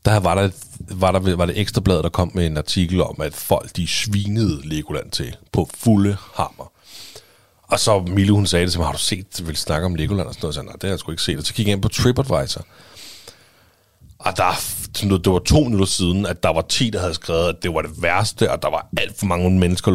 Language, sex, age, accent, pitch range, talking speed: Danish, male, 30-49, native, 85-105 Hz, 245 wpm